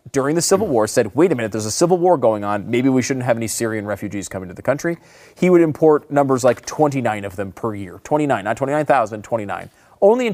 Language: English